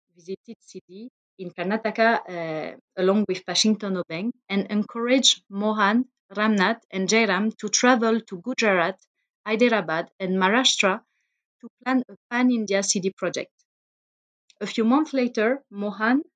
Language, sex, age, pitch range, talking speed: English, female, 30-49, 190-230 Hz, 120 wpm